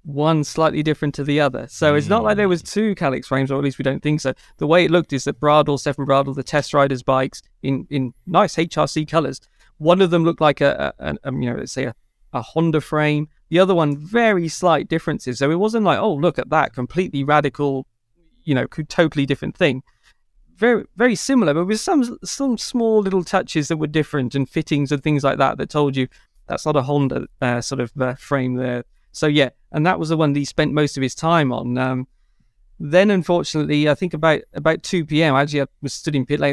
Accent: British